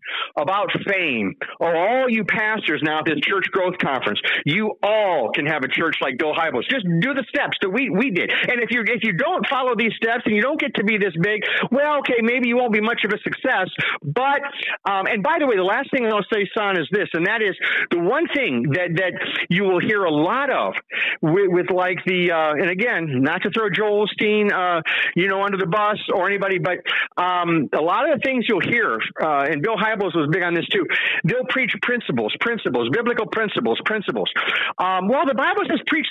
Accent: American